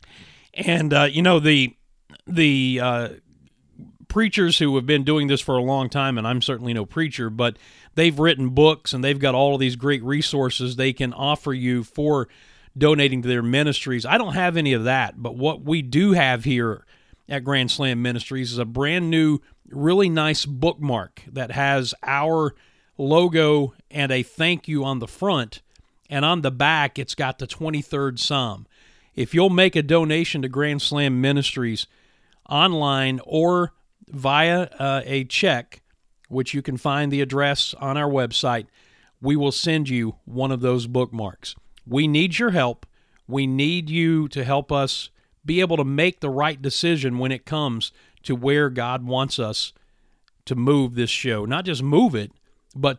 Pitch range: 125-155 Hz